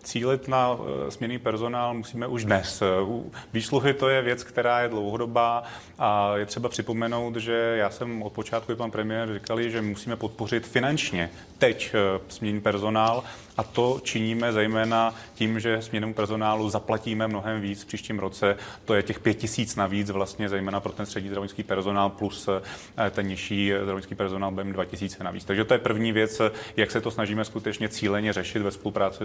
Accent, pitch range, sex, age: native, 105-115 Hz, male, 30-49